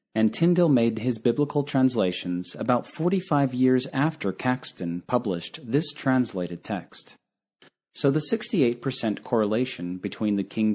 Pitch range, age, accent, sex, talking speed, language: 100-145 Hz, 40-59, American, male, 125 wpm, English